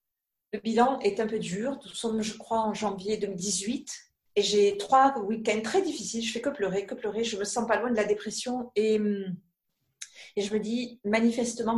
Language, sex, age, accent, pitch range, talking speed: French, female, 40-59, French, 200-245 Hz, 205 wpm